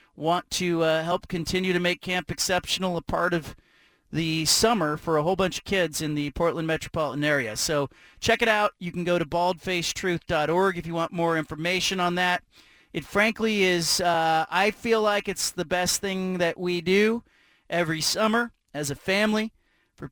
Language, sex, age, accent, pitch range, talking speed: English, male, 40-59, American, 165-195 Hz, 180 wpm